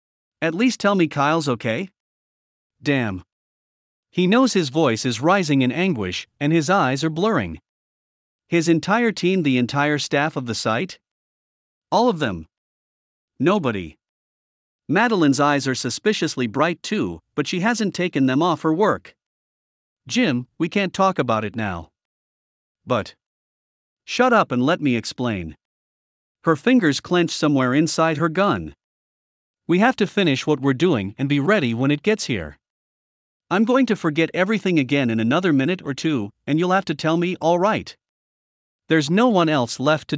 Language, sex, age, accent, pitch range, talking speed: English, male, 50-69, American, 130-185 Hz, 160 wpm